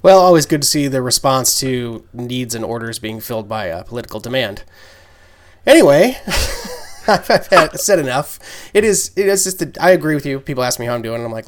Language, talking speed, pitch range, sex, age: English, 220 wpm, 110-130 Hz, male, 20-39